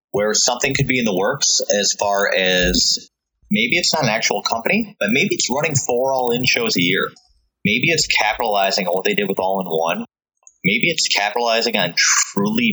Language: English